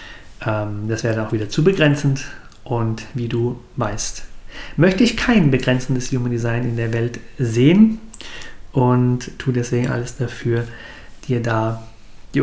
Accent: German